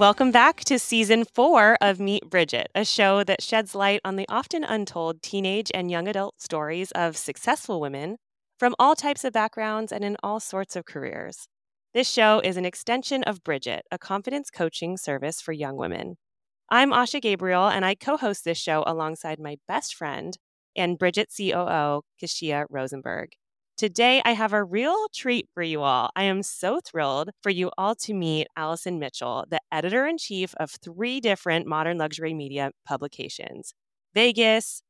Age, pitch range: 30-49, 160-220 Hz